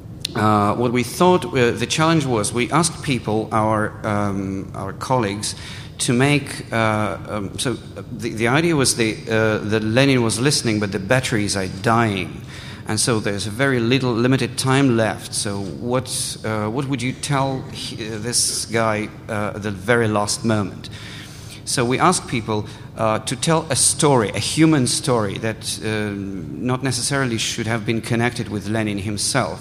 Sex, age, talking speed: male, 50-69, 165 wpm